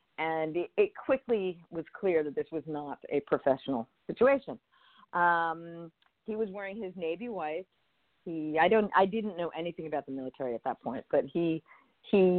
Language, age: English, 40-59